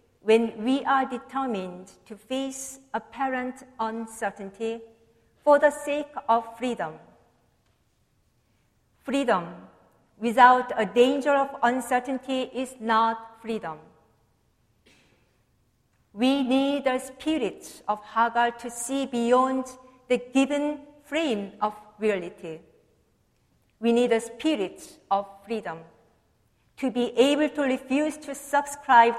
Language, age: English, 50-69